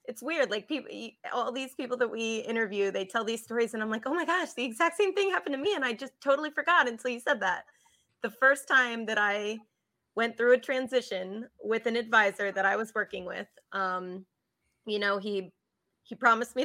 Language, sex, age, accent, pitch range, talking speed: English, female, 20-39, American, 210-250 Hz, 215 wpm